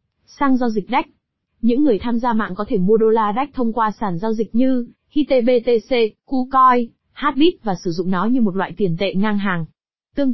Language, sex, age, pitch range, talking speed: Vietnamese, female, 20-39, 205-250 Hz, 210 wpm